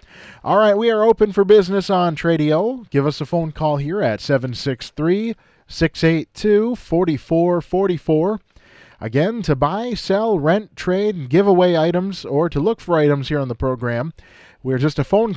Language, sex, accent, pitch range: English, male, American, 135-180 Hz